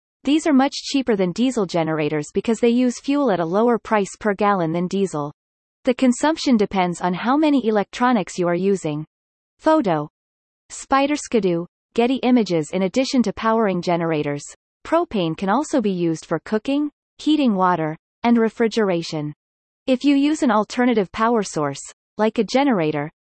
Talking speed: 155 wpm